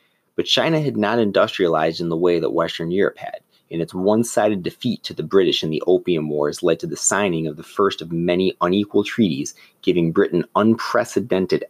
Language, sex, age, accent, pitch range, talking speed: English, male, 30-49, American, 80-105 Hz, 190 wpm